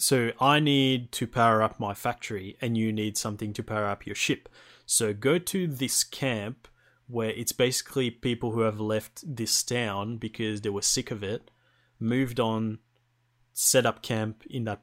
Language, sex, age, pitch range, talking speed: English, male, 20-39, 110-130 Hz, 180 wpm